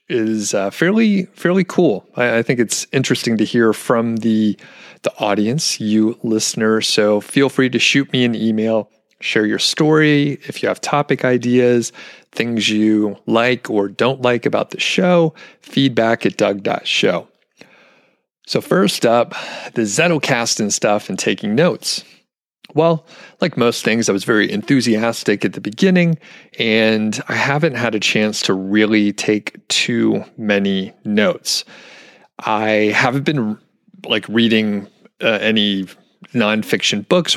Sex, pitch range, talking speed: male, 105-130 Hz, 140 wpm